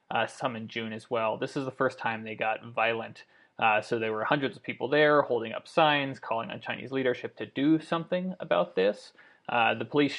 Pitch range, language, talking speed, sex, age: 115-135 Hz, English, 220 wpm, male, 20-39